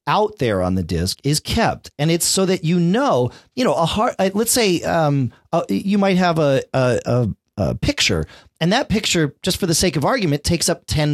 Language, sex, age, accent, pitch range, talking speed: English, male, 40-59, American, 125-175 Hz, 220 wpm